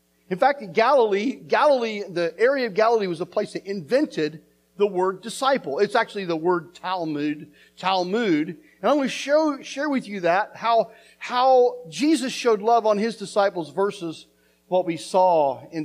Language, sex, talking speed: English, male, 165 wpm